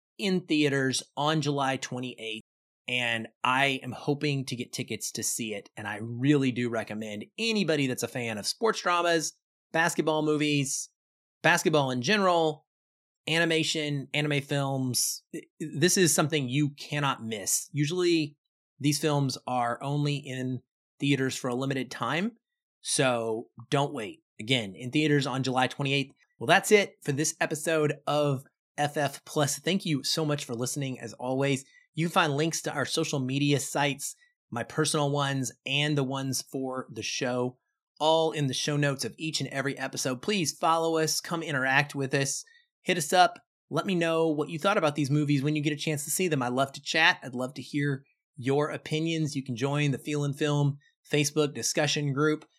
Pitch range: 130-160 Hz